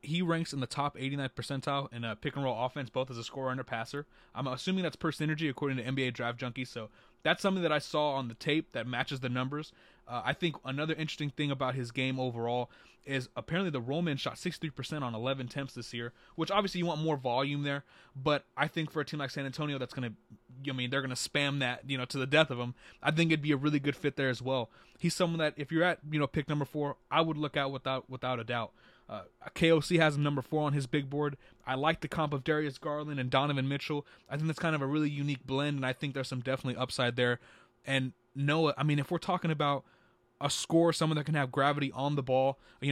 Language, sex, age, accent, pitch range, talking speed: English, male, 20-39, American, 130-150 Hz, 255 wpm